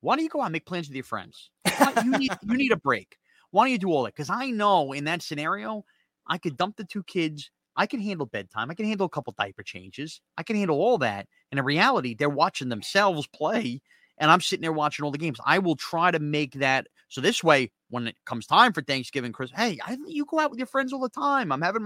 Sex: male